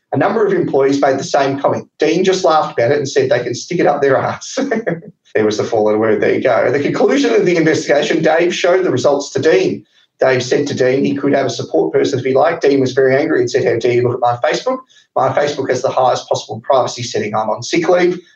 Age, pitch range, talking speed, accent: 30-49, 120-200 Hz, 260 wpm, Australian